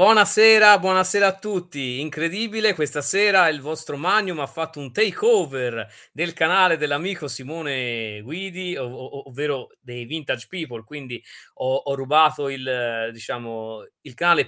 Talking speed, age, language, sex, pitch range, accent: 135 wpm, 30-49, Italian, male, 120-180 Hz, native